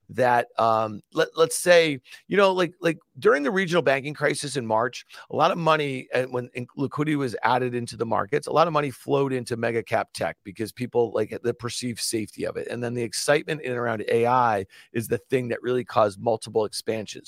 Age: 40-59